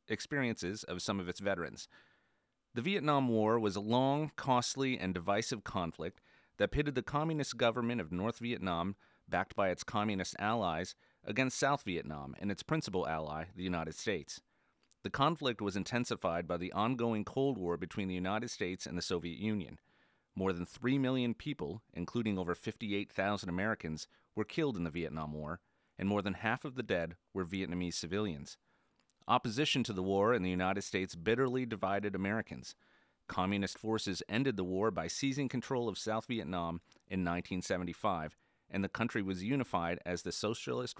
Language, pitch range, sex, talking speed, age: English, 90-120 Hz, male, 165 wpm, 30-49